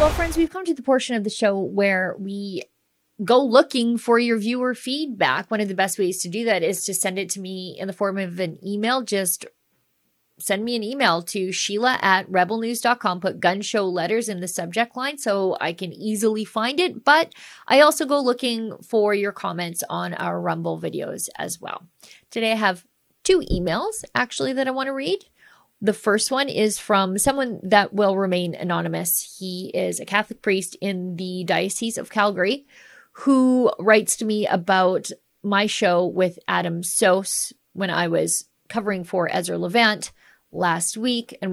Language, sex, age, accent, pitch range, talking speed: English, female, 30-49, American, 180-225 Hz, 180 wpm